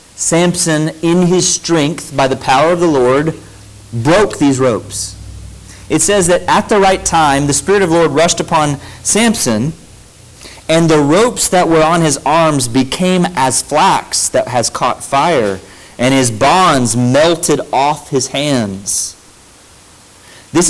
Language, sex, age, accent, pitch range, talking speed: English, male, 40-59, American, 115-155 Hz, 150 wpm